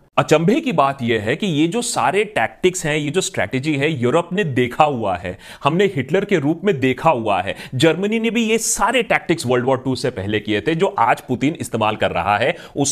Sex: male